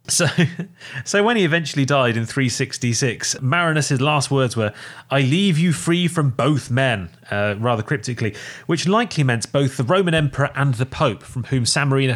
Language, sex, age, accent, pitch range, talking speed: English, male, 30-49, British, 115-155 Hz, 175 wpm